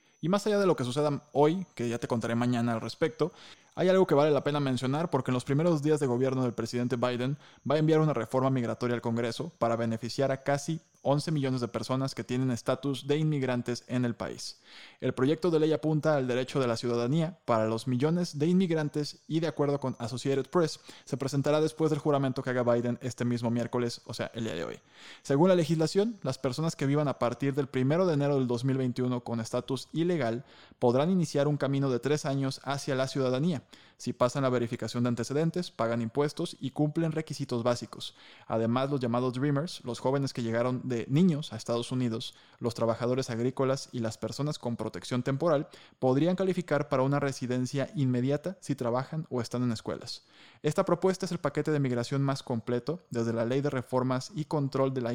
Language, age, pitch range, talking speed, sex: Spanish, 20-39, 120-150 Hz, 200 wpm, male